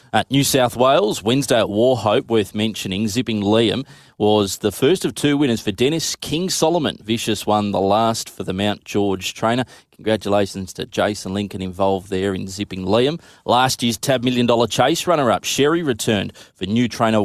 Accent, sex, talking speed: Australian, male, 175 wpm